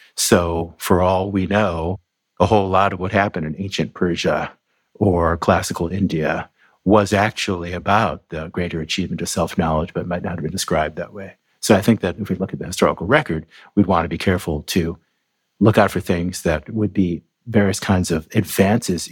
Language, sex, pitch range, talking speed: English, male, 80-100 Hz, 190 wpm